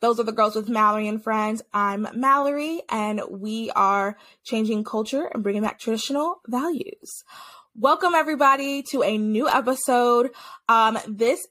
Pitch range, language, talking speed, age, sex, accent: 215-270 Hz, English, 145 wpm, 20-39, female, American